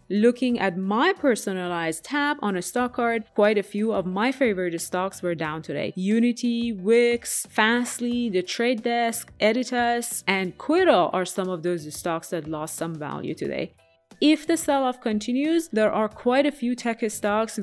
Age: 20-39